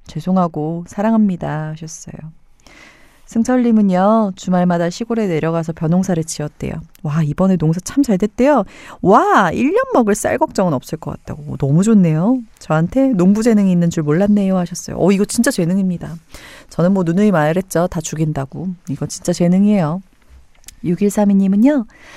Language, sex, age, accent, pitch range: Korean, female, 30-49, native, 160-230 Hz